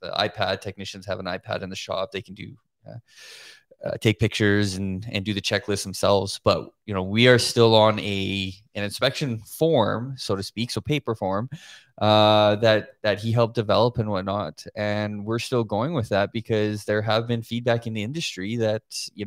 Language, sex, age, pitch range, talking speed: English, male, 20-39, 100-115 Hz, 195 wpm